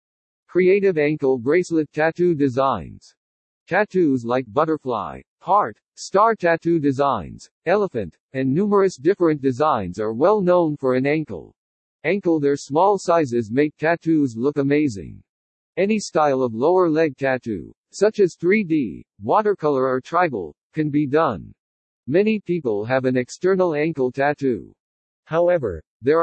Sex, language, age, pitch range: male, English, 50-69, 135-175 Hz